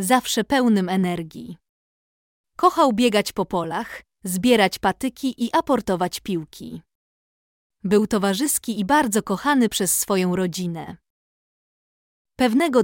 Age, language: 20-39, Polish